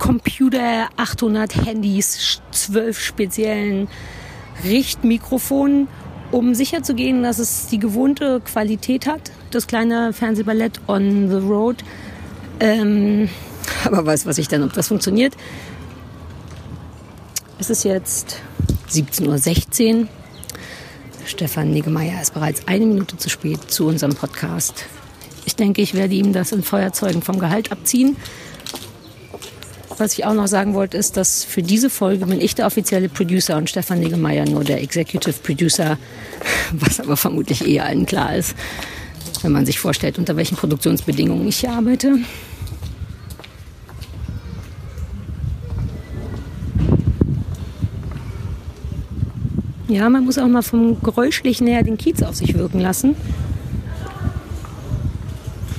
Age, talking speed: 50-69, 120 wpm